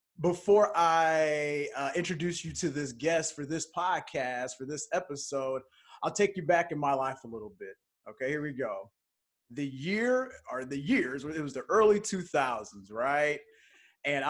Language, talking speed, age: English, 170 wpm, 30-49